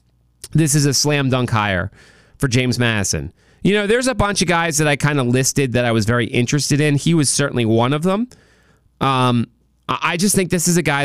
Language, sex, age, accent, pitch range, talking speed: English, male, 30-49, American, 120-155 Hz, 225 wpm